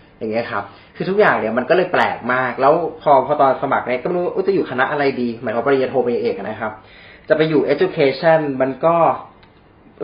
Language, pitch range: Thai, 110-150 Hz